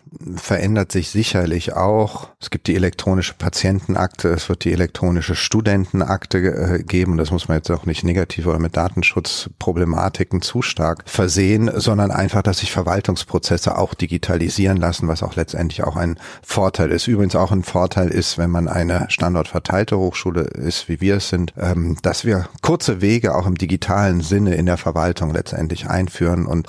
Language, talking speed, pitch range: German, 165 wpm, 85-100 Hz